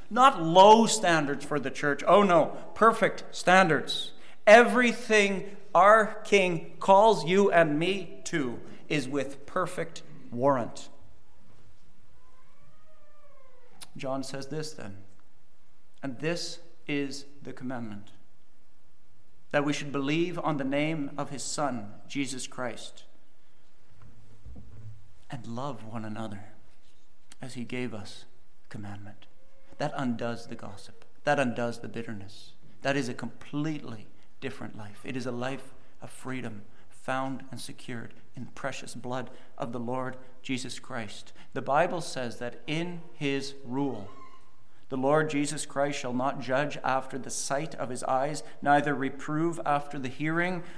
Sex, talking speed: male, 130 wpm